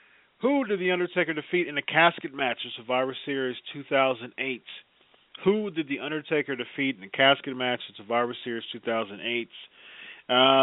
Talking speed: 145 wpm